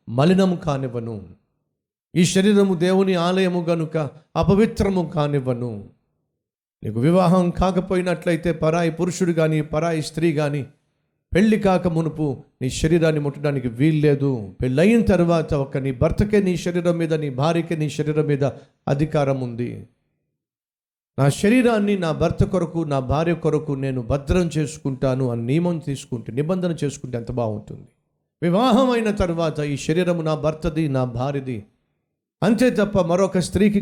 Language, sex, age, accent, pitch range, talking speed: Telugu, male, 50-69, native, 140-180 Hz, 130 wpm